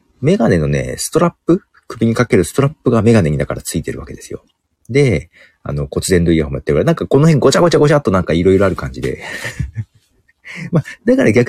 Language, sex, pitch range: Japanese, male, 85-130 Hz